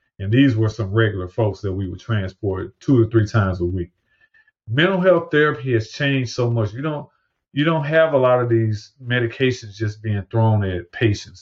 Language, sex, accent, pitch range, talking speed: English, male, American, 100-125 Hz, 200 wpm